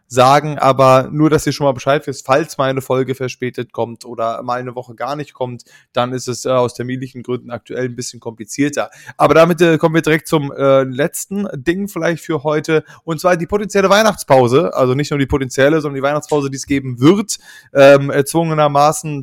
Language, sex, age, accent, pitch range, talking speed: German, male, 20-39, German, 130-155 Hz, 200 wpm